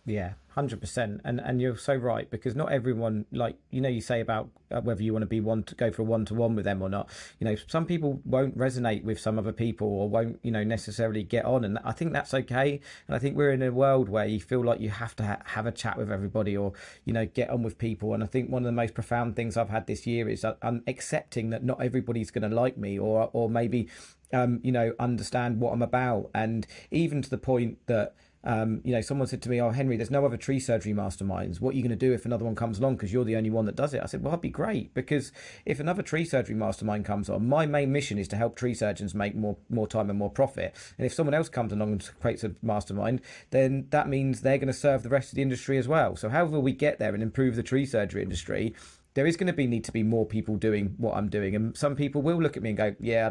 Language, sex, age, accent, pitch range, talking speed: English, male, 40-59, British, 110-130 Hz, 275 wpm